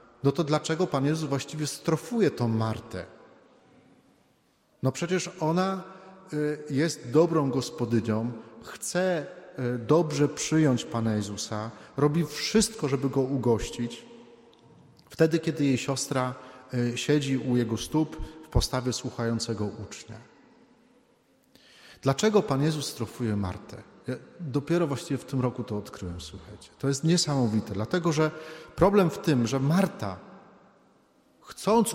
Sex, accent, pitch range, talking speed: male, native, 120-160 Hz, 115 wpm